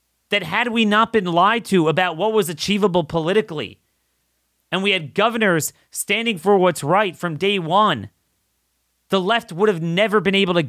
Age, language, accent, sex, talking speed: 30-49, English, American, male, 175 wpm